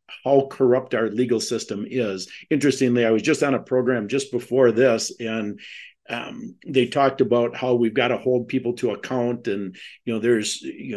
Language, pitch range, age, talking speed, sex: English, 115-135 Hz, 50-69, 185 wpm, male